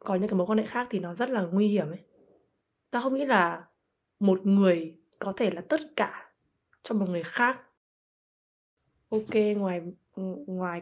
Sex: female